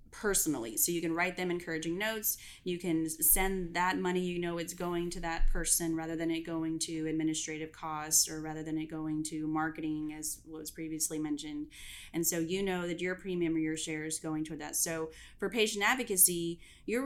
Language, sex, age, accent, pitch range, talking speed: English, female, 30-49, American, 160-180 Hz, 200 wpm